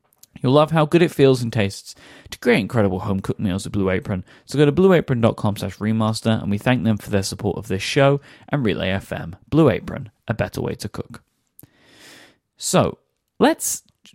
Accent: British